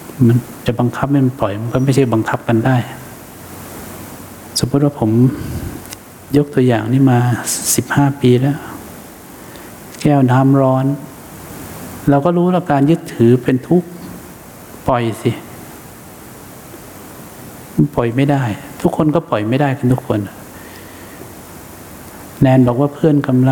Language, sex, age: English, male, 60-79